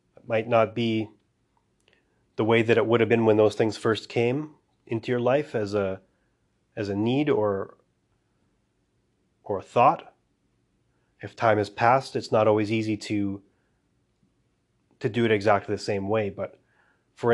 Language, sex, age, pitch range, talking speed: English, male, 30-49, 105-120 Hz, 155 wpm